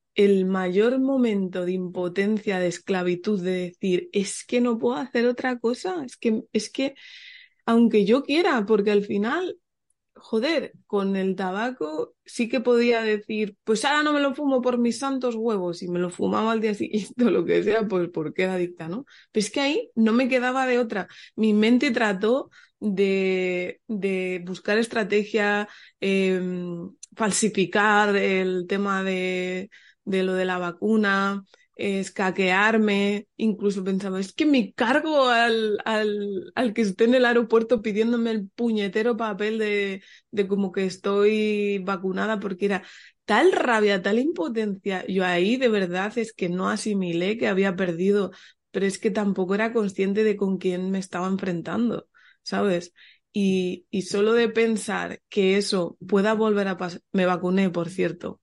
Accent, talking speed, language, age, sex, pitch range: Spanish, 160 wpm, Spanish, 20-39, female, 190-230 Hz